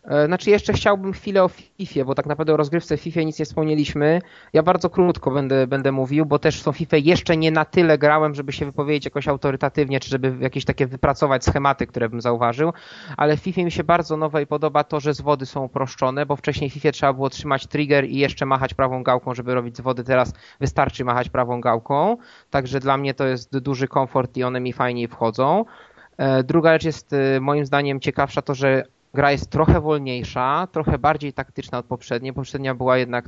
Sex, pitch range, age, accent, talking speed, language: male, 130-155 Hz, 20-39, native, 200 wpm, Polish